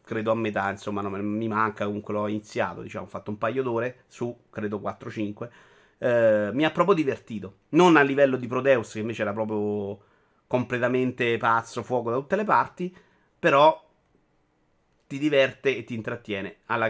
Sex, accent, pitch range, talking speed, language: male, native, 115-160 Hz, 165 wpm, Italian